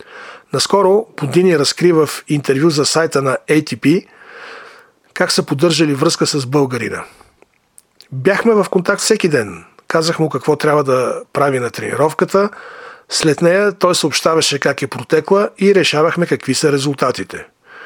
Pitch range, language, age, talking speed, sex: 140-185 Hz, Bulgarian, 40-59, 135 wpm, male